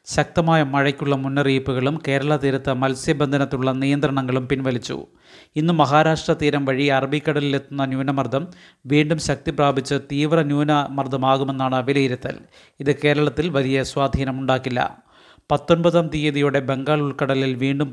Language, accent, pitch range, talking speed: Malayalam, native, 135-150 Hz, 95 wpm